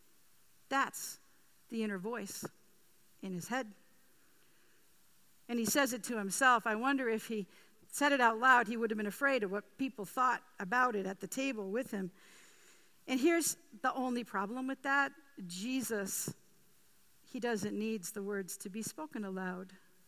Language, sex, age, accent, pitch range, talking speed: English, female, 50-69, American, 190-250 Hz, 160 wpm